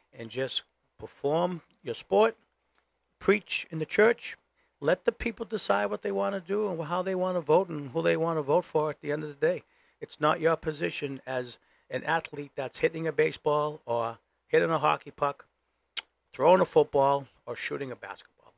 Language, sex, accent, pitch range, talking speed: English, male, American, 125-165 Hz, 195 wpm